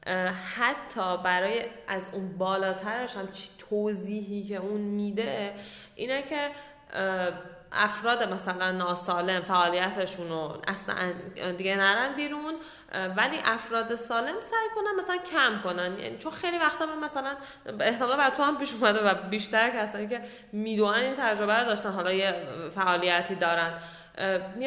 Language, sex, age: Persian, female, 10-29